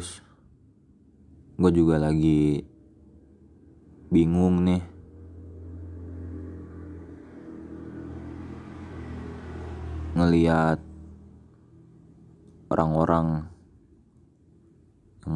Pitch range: 80-100 Hz